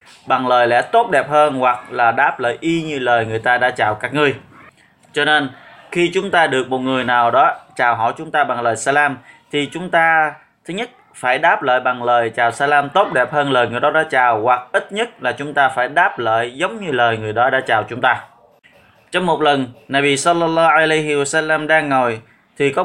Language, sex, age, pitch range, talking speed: Vietnamese, male, 20-39, 130-155 Hz, 225 wpm